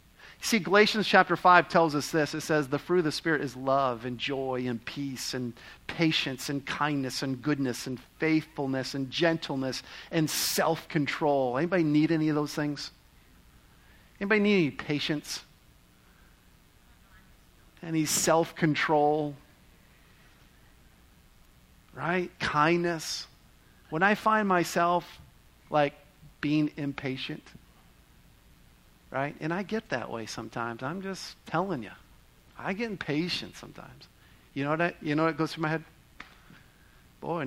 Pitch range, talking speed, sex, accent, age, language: 140-170 Hz, 125 wpm, male, American, 50-69, English